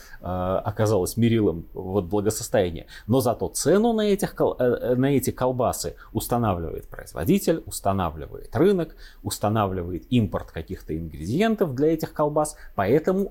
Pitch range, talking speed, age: 90-150 Hz, 100 wpm, 30-49